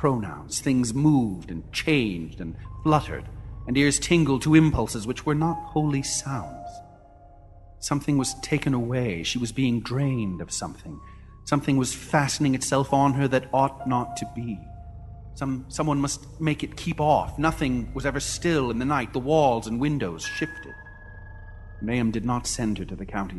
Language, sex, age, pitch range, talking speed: English, male, 40-59, 95-125 Hz, 165 wpm